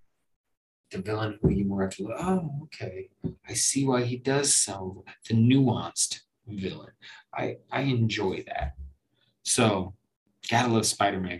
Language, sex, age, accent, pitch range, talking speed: English, male, 30-49, American, 100-120 Hz, 130 wpm